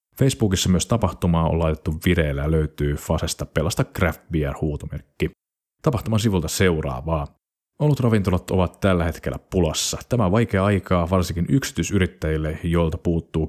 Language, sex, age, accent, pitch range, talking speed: Finnish, male, 30-49, native, 80-100 Hz, 125 wpm